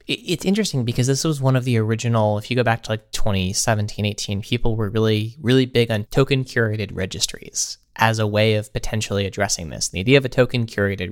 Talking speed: 215 wpm